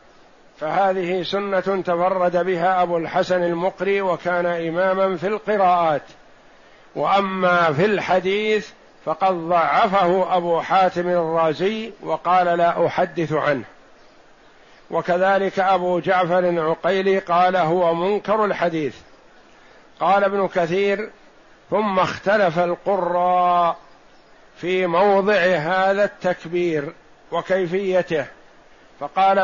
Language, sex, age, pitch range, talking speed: Arabic, male, 50-69, 165-195 Hz, 90 wpm